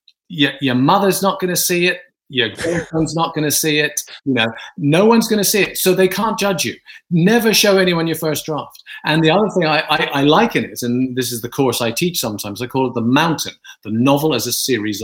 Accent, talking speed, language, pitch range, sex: British, 245 wpm, English, 125-180 Hz, male